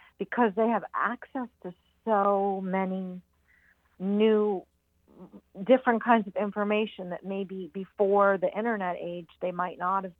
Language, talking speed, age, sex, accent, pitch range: English, 130 wpm, 50-69, female, American, 175-205 Hz